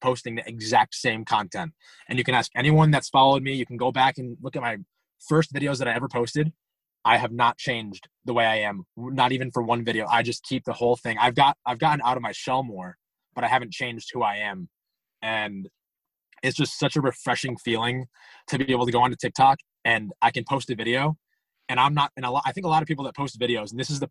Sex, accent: male, American